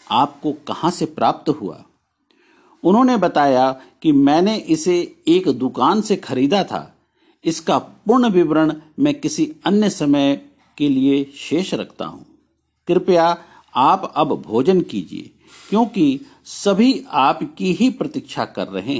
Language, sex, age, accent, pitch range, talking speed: Hindi, male, 50-69, native, 140-210 Hz, 120 wpm